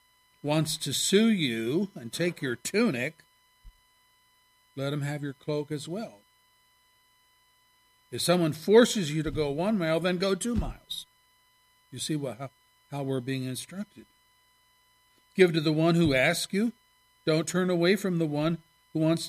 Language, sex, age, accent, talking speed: English, male, 50-69, American, 150 wpm